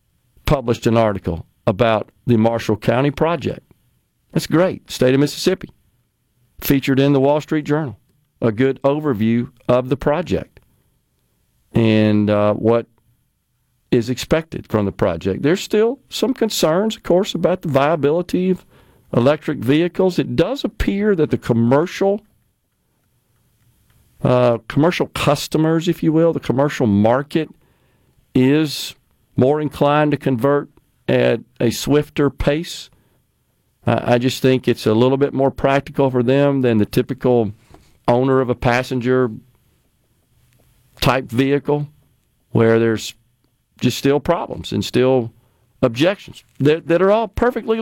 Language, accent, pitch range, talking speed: English, American, 120-150 Hz, 125 wpm